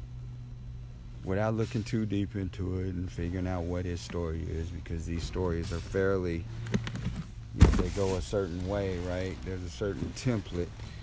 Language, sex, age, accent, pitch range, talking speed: English, male, 50-69, American, 95-115 Hz, 150 wpm